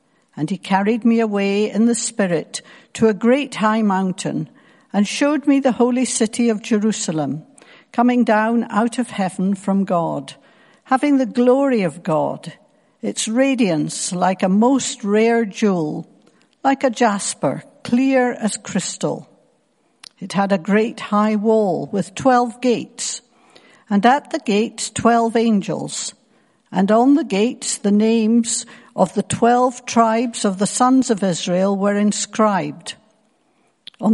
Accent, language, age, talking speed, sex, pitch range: British, English, 60-79, 140 wpm, female, 200-240 Hz